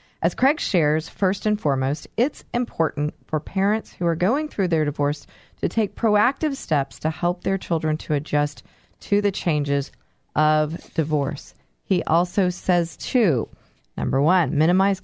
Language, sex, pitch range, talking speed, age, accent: English, female, 150-195 Hz, 150 wpm, 30-49, American